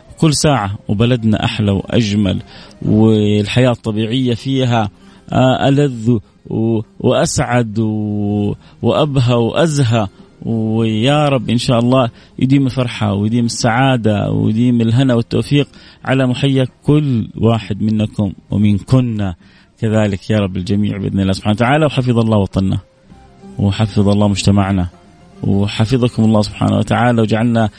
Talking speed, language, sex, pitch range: 110 wpm, Arabic, male, 105-125 Hz